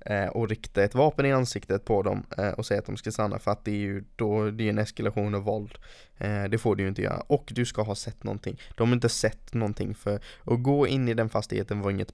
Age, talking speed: 20-39, 255 wpm